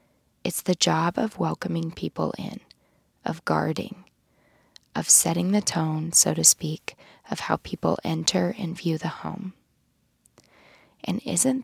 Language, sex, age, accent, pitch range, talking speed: English, female, 20-39, American, 165-190 Hz, 135 wpm